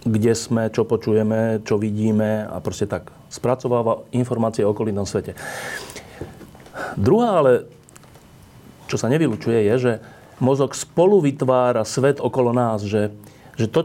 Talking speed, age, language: 130 wpm, 30-49, Slovak